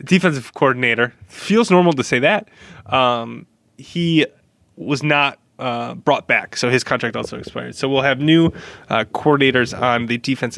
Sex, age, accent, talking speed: male, 20-39, American, 160 wpm